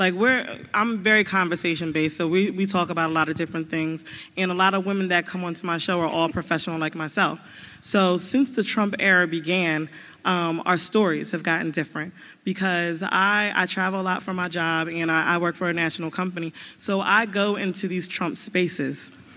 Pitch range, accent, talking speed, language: 175-205 Hz, American, 205 wpm, English